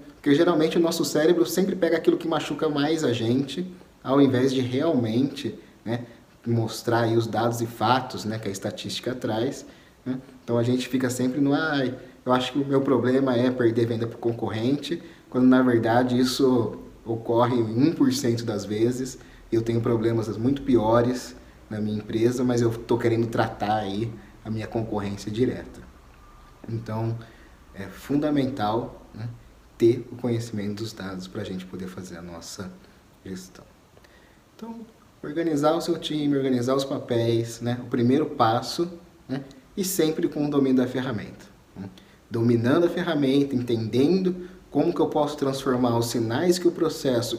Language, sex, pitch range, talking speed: Portuguese, male, 115-140 Hz, 160 wpm